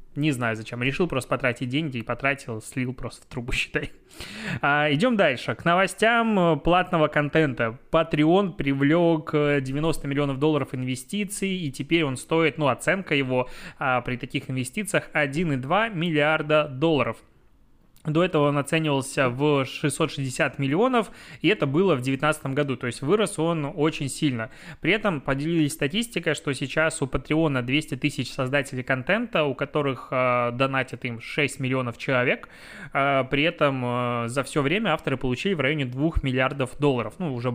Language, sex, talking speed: Russian, male, 150 wpm